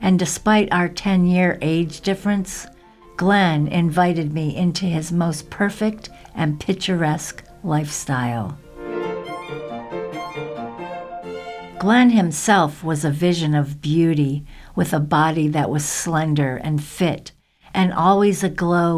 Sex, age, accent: female, 60-79, American